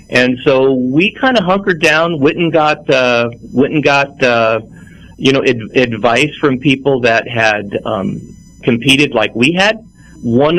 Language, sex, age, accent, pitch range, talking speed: English, male, 40-59, American, 120-145 Hz, 140 wpm